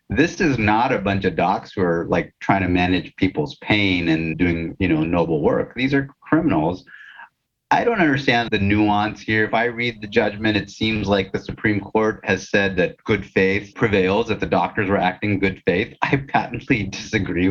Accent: American